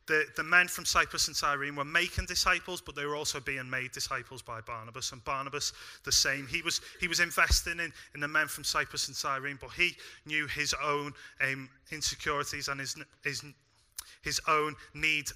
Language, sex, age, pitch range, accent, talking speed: English, male, 30-49, 130-155 Hz, British, 190 wpm